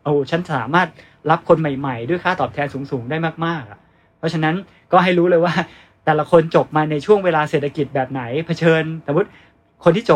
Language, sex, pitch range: Thai, male, 145-170 Hz